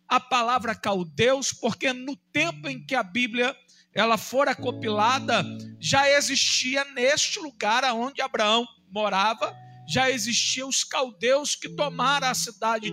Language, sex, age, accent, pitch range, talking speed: Portuguese, male, 50-69, Brazilian, 215-275 Hz, 130 wpm